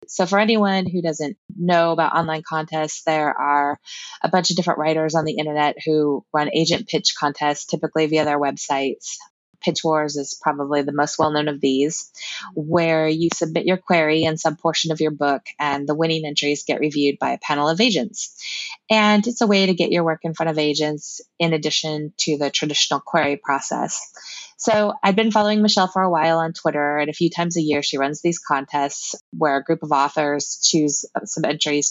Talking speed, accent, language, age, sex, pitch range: 200 wpm, American, English, 20-39, female, 145-175 Hz